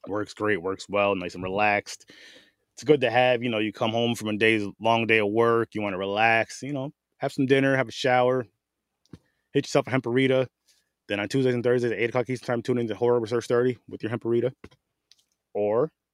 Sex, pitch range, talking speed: male, 100-125 Hz, 215 wpm